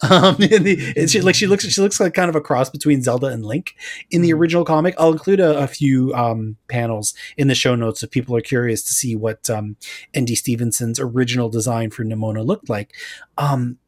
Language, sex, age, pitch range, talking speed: English, male, 30-49, 125-165 Hz, 205 wpm